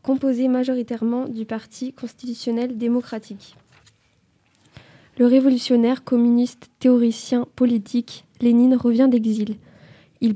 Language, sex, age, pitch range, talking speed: French, female, 20-39, 220-245 Hz, 85 wpm